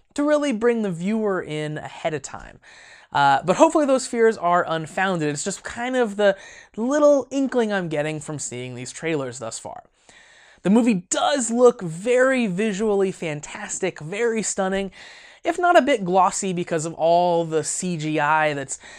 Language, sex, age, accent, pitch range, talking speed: English, male, 20-39, American, 150-200 Hz, 160 wpm